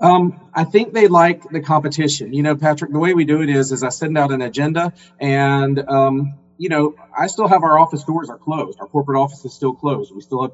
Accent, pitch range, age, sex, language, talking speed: American, 130-150 Hz, 40-59, male, English, 245 wpm